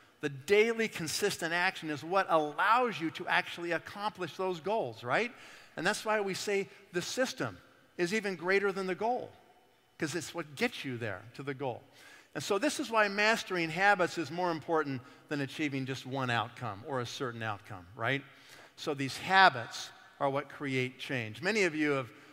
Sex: male